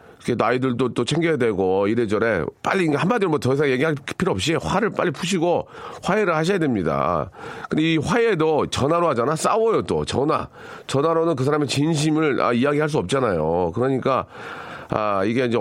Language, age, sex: Korean, 40-59, male